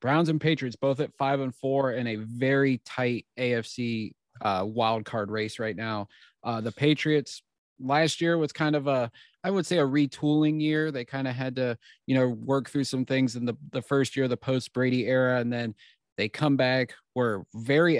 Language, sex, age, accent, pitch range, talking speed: English, male, 30-49, American, 120-140 Hz, 205 wpm